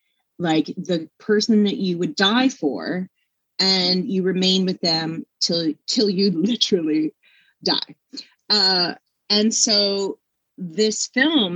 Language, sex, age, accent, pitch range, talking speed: English, female, 30-49, American, 170-235 Hz, 120 wpm